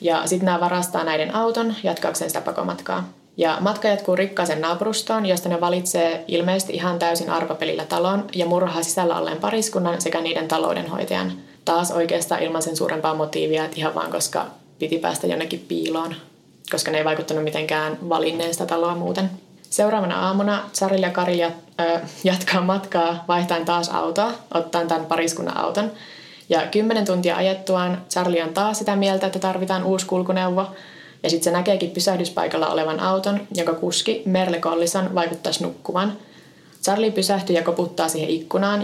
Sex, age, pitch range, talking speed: female, 20-39, 165-190 Hz, 150 wpm